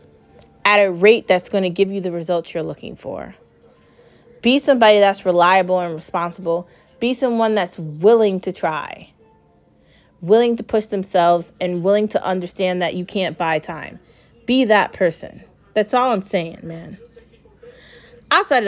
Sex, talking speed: female, 150 wpm